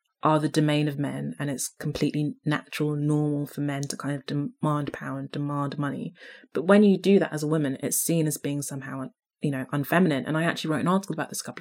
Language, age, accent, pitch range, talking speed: English, 20-39, British, 145-165 Hz, 240 wpm